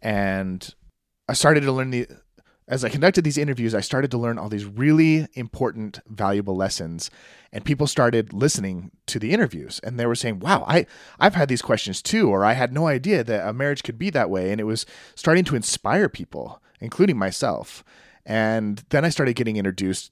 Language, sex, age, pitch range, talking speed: English, male, 30-49, 105-135 Hz, 195 wpm